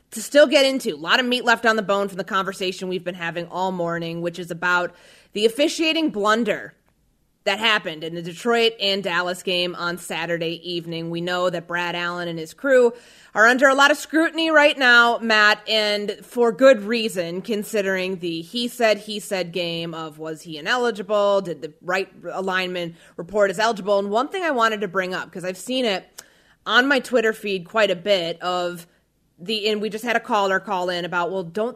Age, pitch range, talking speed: 30-49, 180-240 Hz, 205 wpm